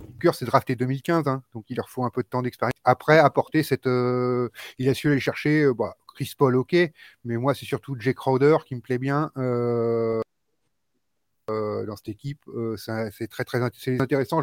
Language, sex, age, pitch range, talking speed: French, male, 30-49, 115-145 Hz, 205 wpm